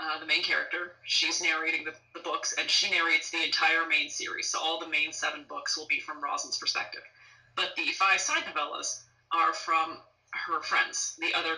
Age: 20-39